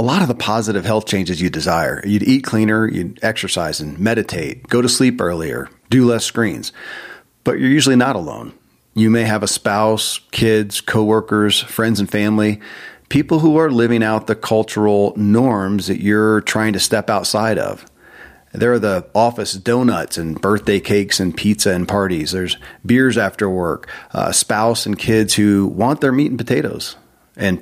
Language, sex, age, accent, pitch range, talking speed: English, male, 40-59, American, 100-120 Hz, 175 wpm